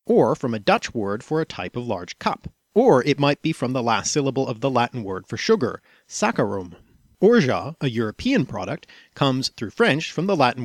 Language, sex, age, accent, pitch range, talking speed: English, male, 40-59, American, 115-145 Hz, 205 wpm